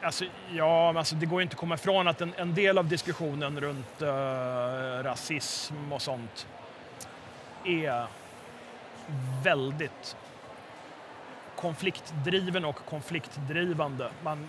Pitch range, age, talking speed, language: 140-170 Hz, 30-49, 110 wpm, Swedish